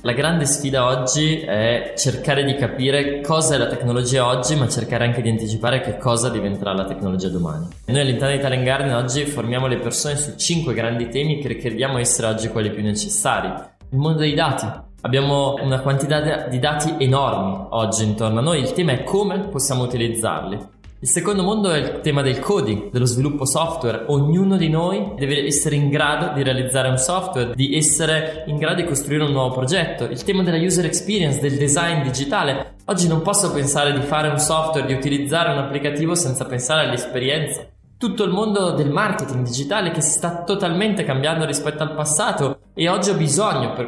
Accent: native